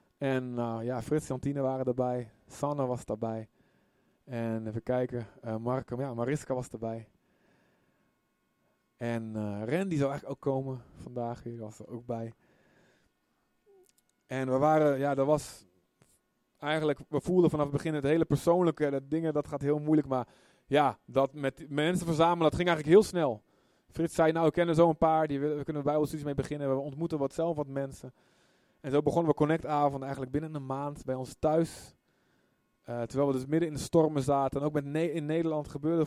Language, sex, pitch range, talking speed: Dutch, male, 125-150 Hz, 195 wpm